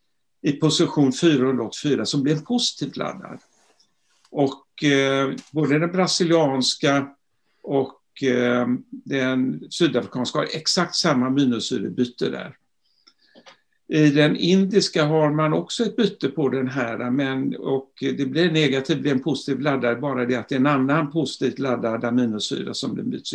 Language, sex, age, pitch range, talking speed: Swedish, male, 60-79, 125-160 Hz, 145 wpm